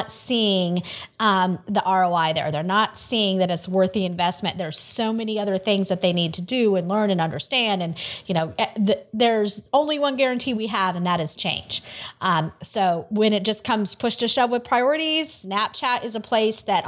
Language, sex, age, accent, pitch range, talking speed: English, female, 30-49, American, 185-240 Hz, 200 wpm